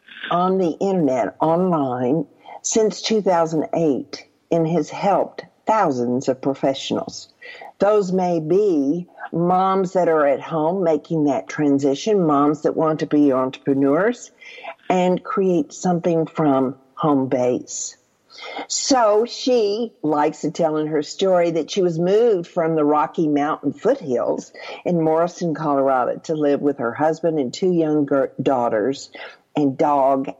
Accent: American